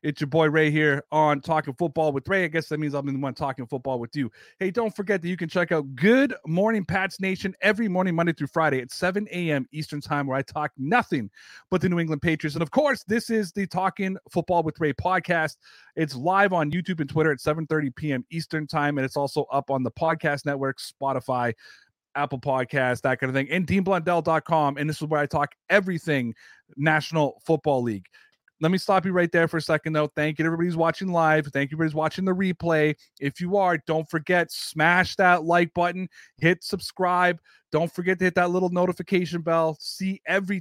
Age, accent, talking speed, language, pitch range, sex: 30-49, American, 215 wpm, English, 150-185 Hz, male